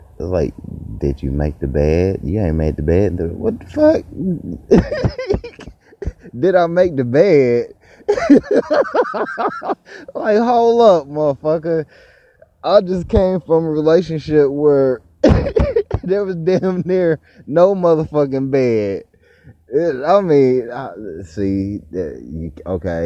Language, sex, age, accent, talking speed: English, male, 30-49, American, 110 wpm